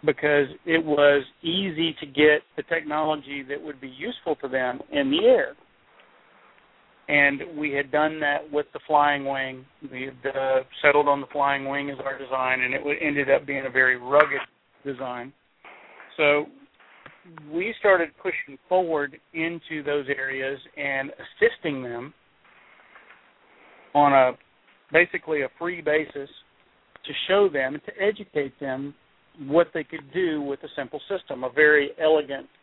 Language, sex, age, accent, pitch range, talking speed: English, male, 50-69, American, 135-160 Hz, 145 wpm